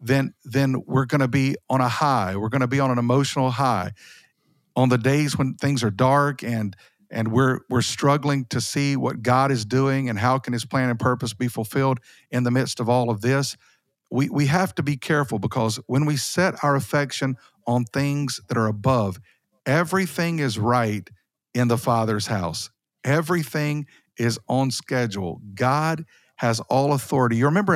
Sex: male